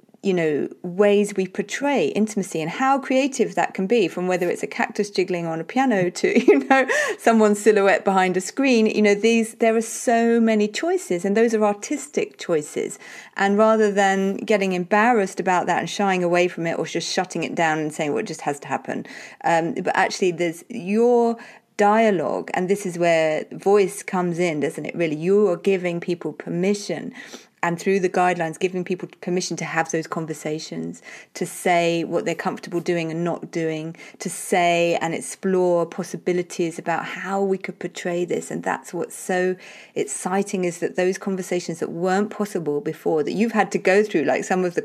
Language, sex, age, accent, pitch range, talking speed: English, female, 30-49, British, 170-210 Hz, 190 wpm